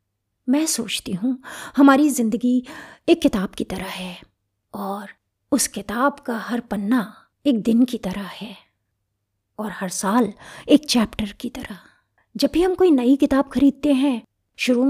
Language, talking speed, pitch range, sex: Hindi, 150 wpm, 205-265 Hz, female